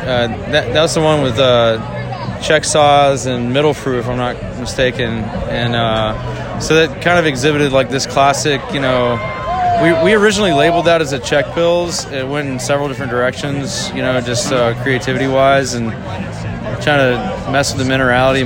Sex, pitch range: male, 120-140 Hz